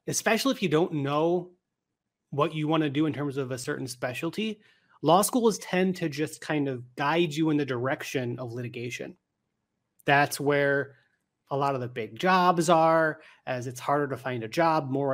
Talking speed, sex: 185 wpm, male